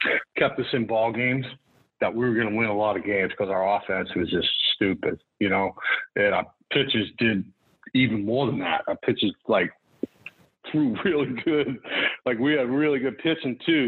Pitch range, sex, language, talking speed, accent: 100-120 Hz, male, English, 190 wpm, American